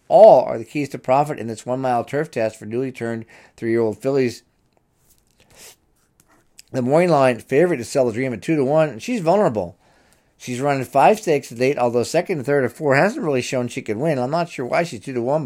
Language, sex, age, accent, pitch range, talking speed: English, male, 50-69, American, 110-140 Hz, 235 wpm